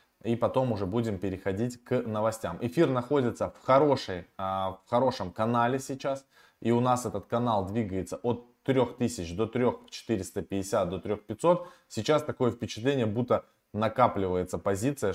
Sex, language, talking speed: male, Russian, 140 wpm